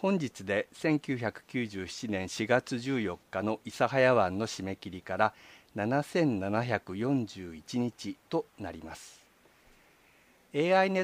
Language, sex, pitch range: Japanese, male, 105-145 Hz